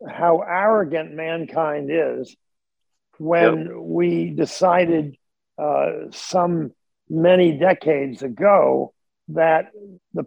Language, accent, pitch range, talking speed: English, American, 155-190 Hz, 80 wpm